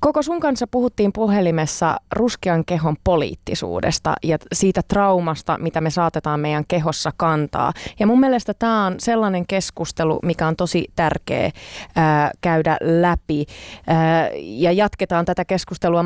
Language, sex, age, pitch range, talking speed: Finnish, female, 20-39, 160-205 Hz, 130 wpm